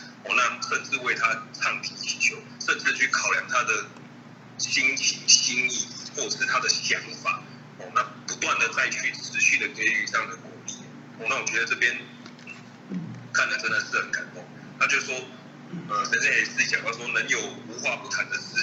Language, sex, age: Chinese, male, 30-49